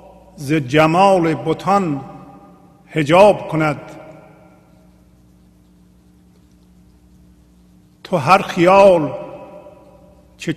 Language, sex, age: English, male, 50-69